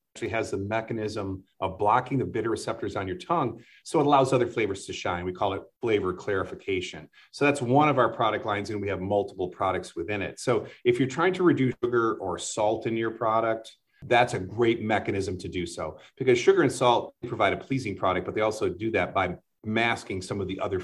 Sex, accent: male, American